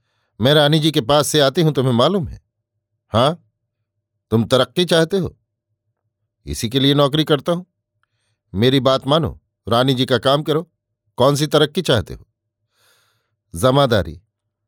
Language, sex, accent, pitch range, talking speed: Hindi, male, native, 110-145 Hz, 150 wpm